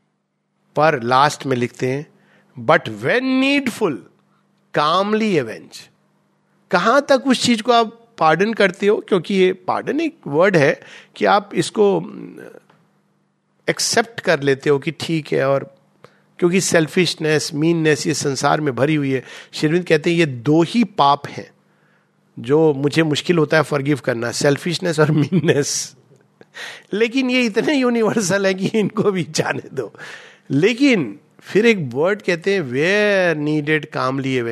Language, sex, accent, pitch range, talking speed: Hindi, male, native, 145-200 Hz, 140 wpm